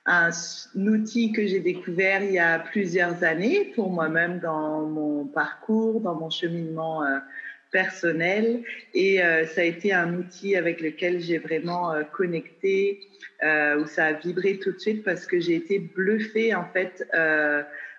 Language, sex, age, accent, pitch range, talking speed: French, female, 40-59, French, 165-200 Hz, 165 wpm